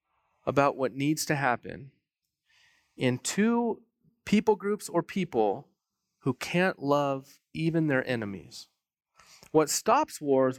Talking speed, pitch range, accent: 115 wpm, 125-160 Hz, American